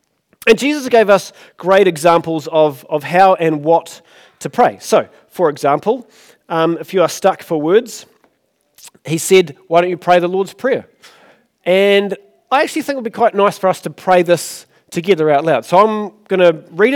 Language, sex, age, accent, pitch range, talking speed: English, male, 40-59, Australian, 160-200 Hz, 190 wpm